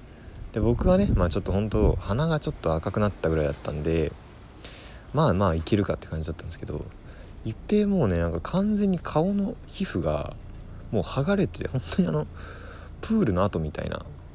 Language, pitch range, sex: Japanese, 85-115 Hz, male